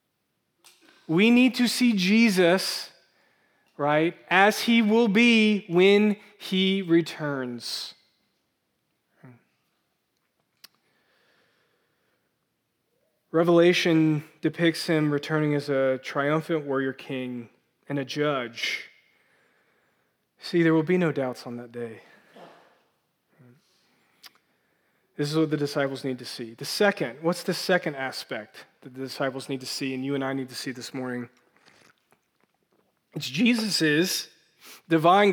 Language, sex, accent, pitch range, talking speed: English, male, American, 150-195 Hz, 110 wpm